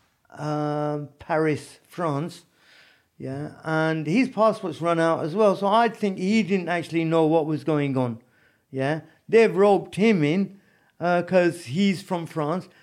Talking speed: 150 wpm